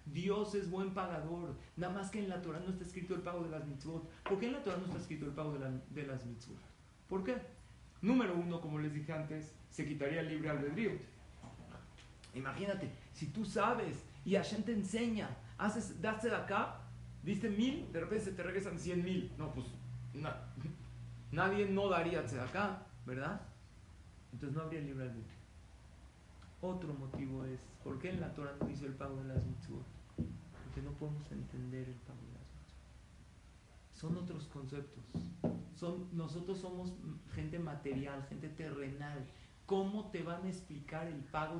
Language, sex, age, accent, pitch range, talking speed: Spanish, male, 40-59, Mexican, 135-185 Hz, 175 wpm